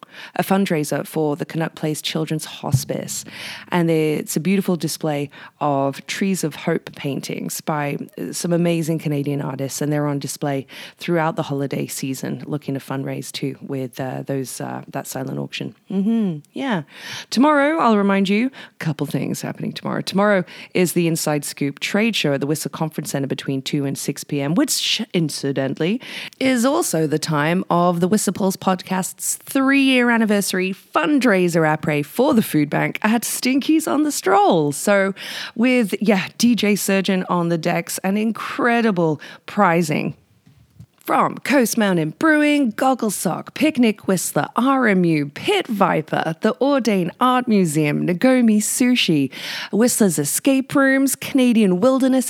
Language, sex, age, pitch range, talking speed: English, female, 20-39, 150-225 Hz, 145 wpm